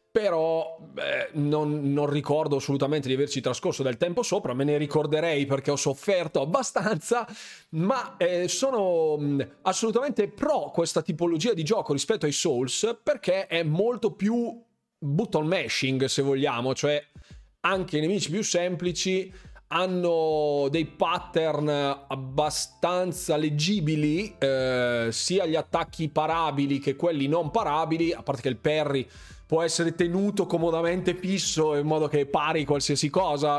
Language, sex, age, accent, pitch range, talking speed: Italian, male, 30-49, native, 145-195 Hz, 135 wpm